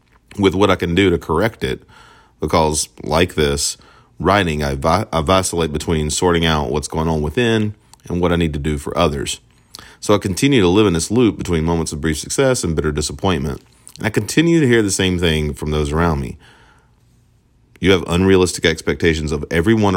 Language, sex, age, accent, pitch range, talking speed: English, male, 40-59, American, 75-95 Hz, 190 wpm